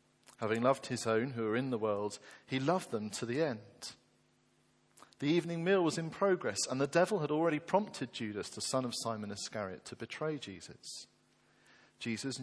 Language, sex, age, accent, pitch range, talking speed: English, male, 40-59, British, 120-175 Hz, 180 wpm